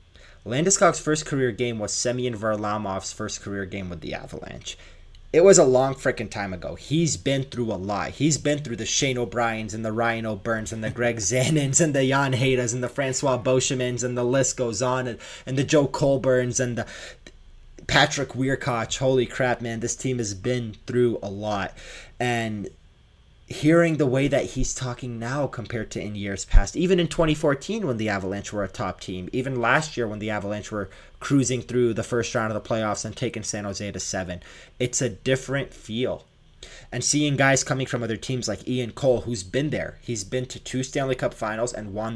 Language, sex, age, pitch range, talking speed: English, male, 20-39, 105-130 Hz, 200 wpm